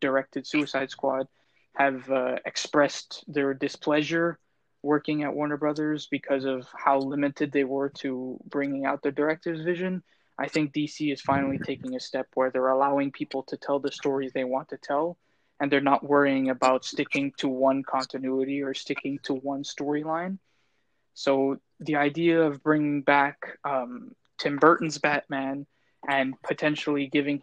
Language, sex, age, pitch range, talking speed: English, male, 20-39, 140-150 Hz, 155 wpm